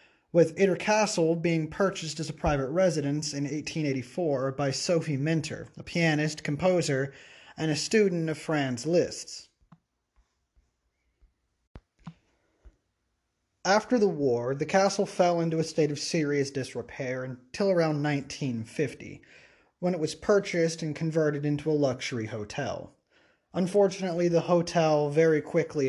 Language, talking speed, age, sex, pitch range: English, 125 wpm, 30-49, male, 135-170 Hz